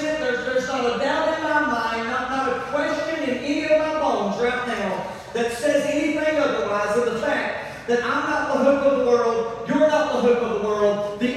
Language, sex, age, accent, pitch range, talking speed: English, male, 40-59, American, 255-305 Hz, 205 wpm